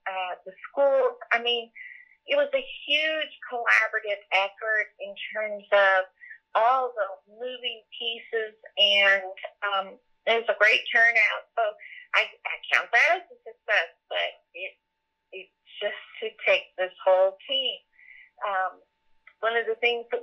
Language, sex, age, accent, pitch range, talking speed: English, female, 40-59, American, 210-270 Hz, 140 wpm